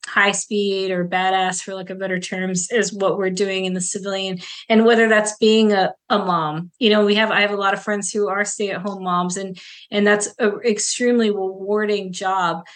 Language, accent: English, American